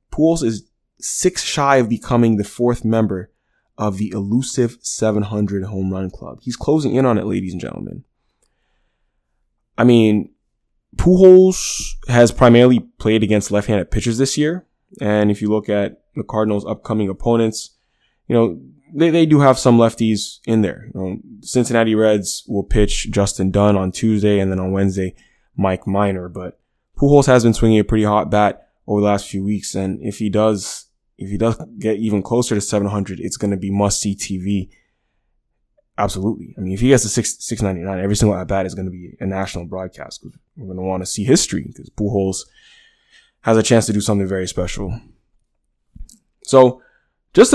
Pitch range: 100-115 Hz